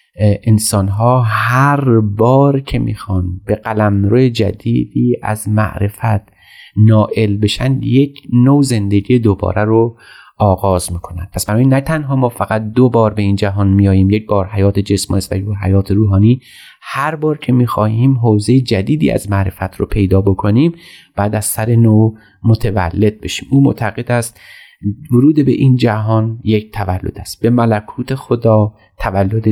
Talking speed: 145 wpm